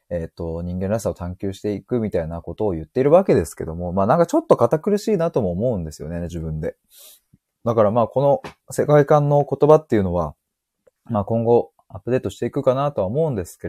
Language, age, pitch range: Japanese, 20-39, 85-130 Hz